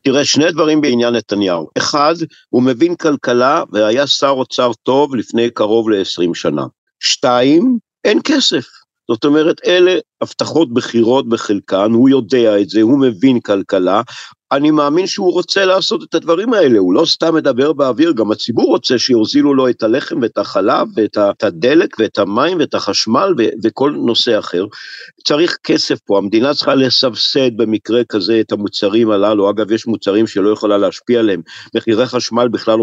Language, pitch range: Hebrew, 115-160 Hz